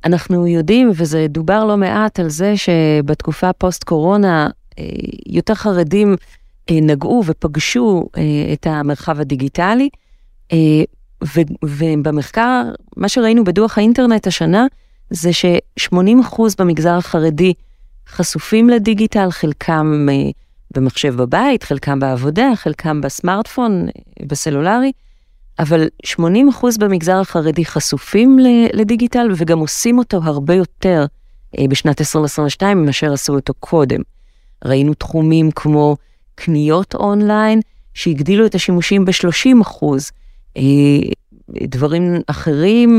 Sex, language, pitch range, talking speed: female, Hebrew, 150-205 Hz, 100 wpm